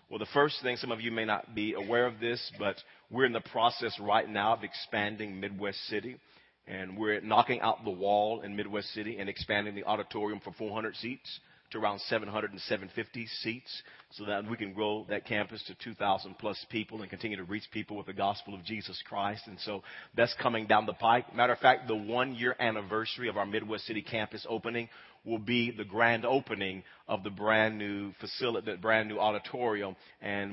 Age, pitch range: 40-59, 105-115 Hz